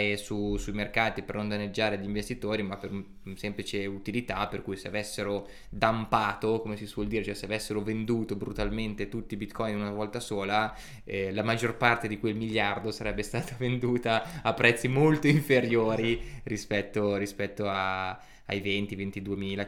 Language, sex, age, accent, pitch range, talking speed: Italian, male, 20-39, native, 100-115 Hz, 165 wpm